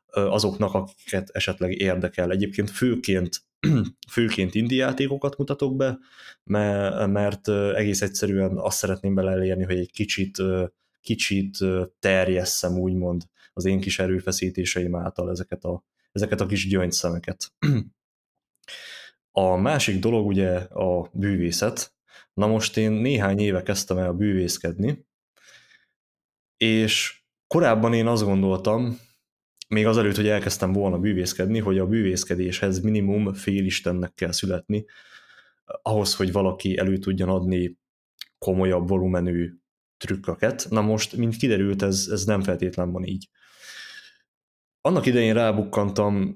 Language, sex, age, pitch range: Hungarian, male, 20-39, 90-105 Hz